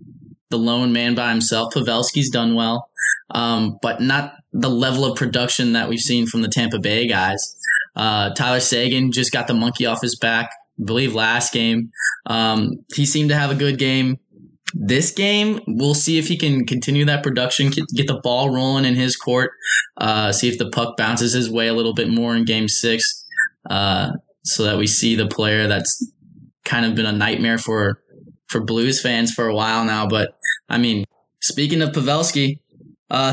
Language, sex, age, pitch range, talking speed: English, male, 10-29, 115-145 Hz, 190 wpm